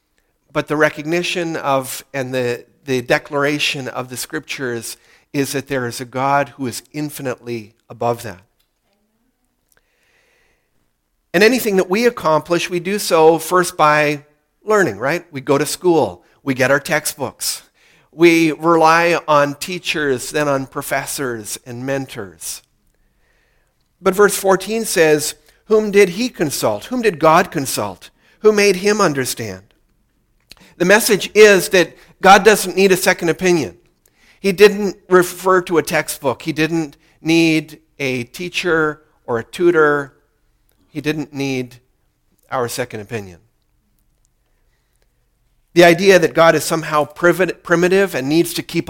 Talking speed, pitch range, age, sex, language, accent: 135 wpm, 135-175 Hz, 50-69, male, English, American